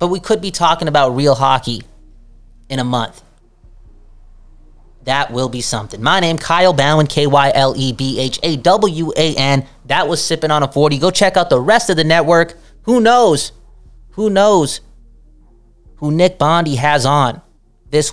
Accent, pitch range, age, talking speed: American, 120-160 Hz, 20-39, 175 wpm